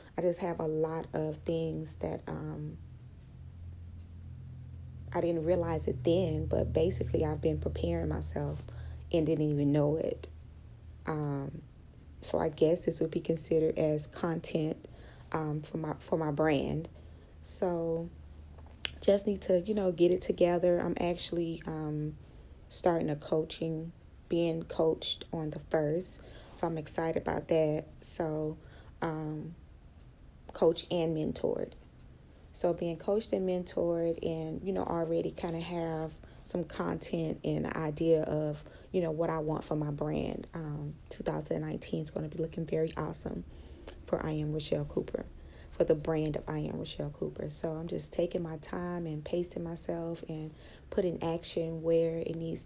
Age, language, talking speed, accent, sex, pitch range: 20-39, English, 150 wpm, American, female, 105-165 Hz